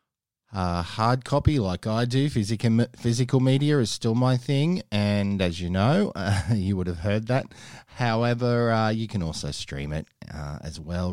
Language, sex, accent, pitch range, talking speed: English, male, Australian, 90-120 Hz, 175 wpm